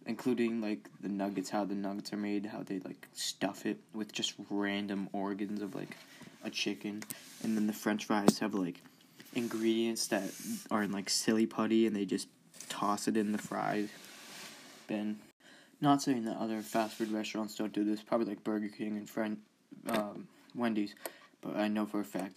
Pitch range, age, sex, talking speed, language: 105-115 Hz, 20-39, male, 185 wpm, English